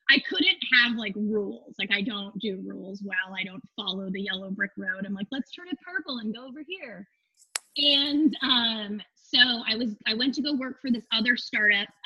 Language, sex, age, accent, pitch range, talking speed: English, female, 20-39, American, 200-255 Hz, 210 wpm